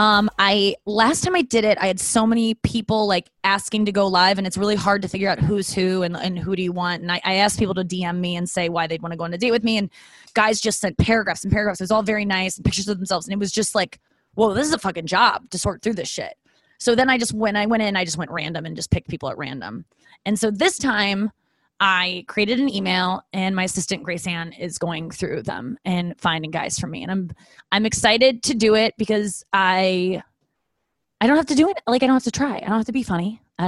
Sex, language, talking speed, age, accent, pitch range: female, English, 270 wpm, 20-39, American, 180-220 Hz